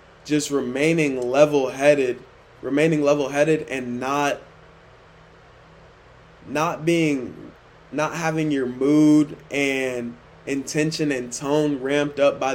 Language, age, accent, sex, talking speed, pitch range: English, 20-39, American, male, 105 wpm, 130-150 Hz